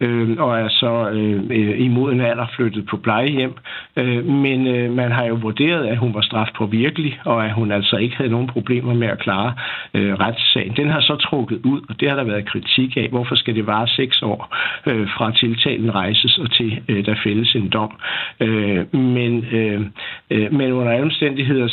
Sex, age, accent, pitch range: male, 60-79, native, 115-135 Hz